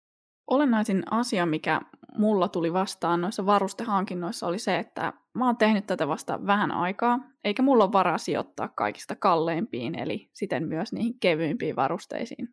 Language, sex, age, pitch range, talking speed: Finnish, female, 20-39, 180-225 Hz, 150 wpm